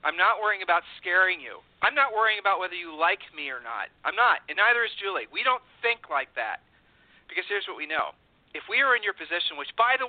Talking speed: 245 wpm